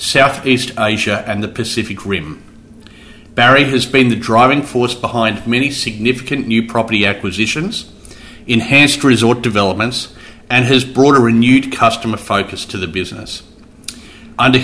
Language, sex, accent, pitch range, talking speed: English, male, Australian, 105-130 Hz, 130 wpm